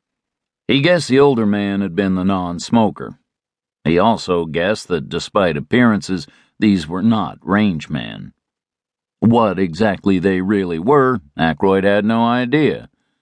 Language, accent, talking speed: English, American, 130 wpm